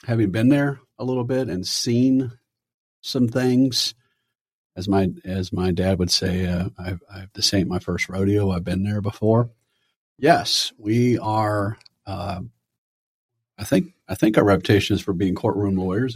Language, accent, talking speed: English, American, 155 wpm